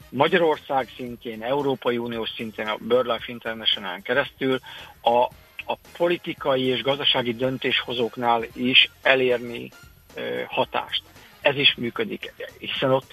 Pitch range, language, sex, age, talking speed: 115-145 Hz, Hungarian, male, 50-69, 105 wpm